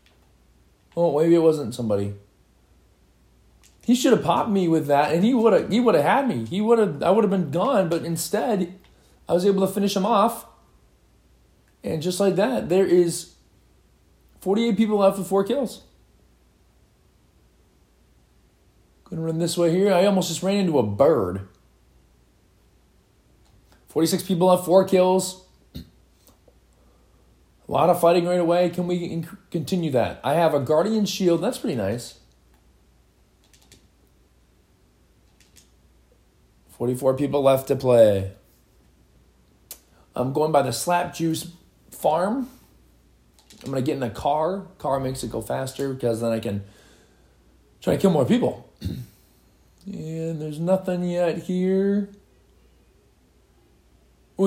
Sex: male